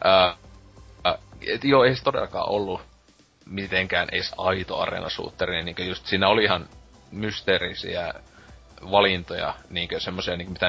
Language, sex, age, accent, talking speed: Finnish, male, 30-49, native, 135 wpm